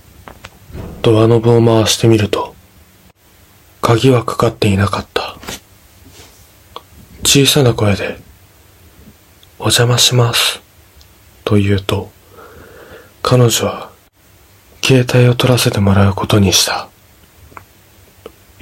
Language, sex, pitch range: Japanese, male, 95-115 Hz